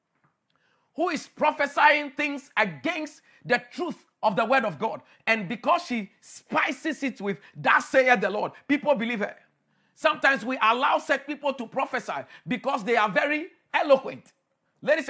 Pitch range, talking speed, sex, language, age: 220-285 Hz, 150 wpm, male, English, 40-59